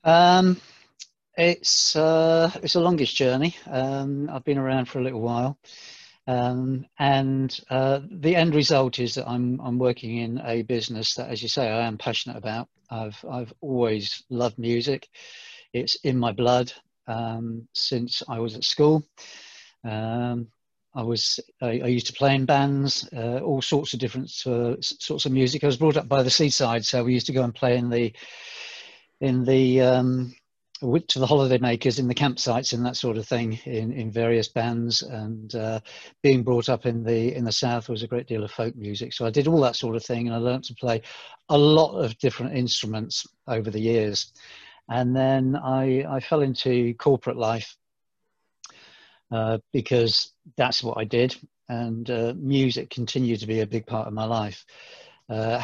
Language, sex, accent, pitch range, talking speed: English, male, British, 115-135 Hz, 185 wpm